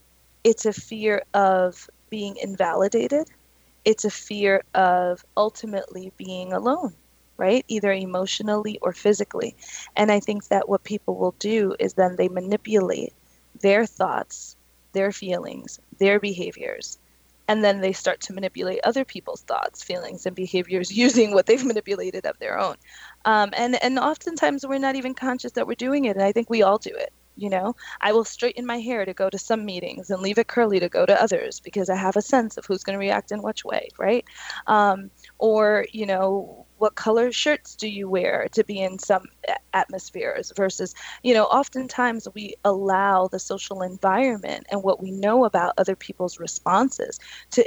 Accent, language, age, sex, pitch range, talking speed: American, English, 20-39, female, 190-235 Hz, 175 wpm